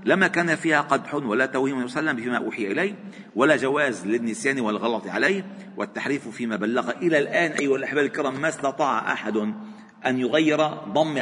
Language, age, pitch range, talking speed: Arabic, 50-69, 130-195 Hz, 155 wpm